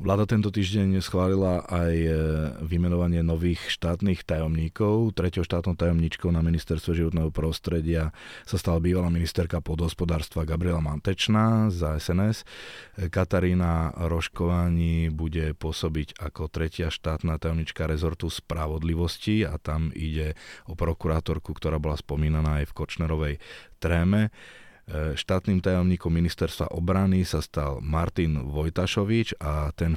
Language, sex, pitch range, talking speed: Slovak, male, 75-85 Hz, 115 wpm